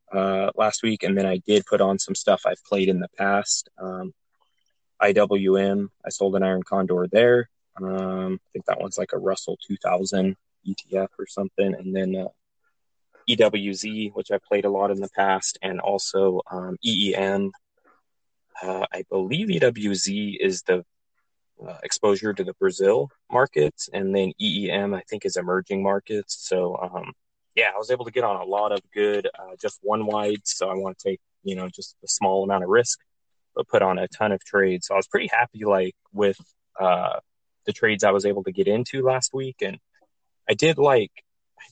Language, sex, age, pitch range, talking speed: English, male, 20-39, 95-110 Hz, 190 wpm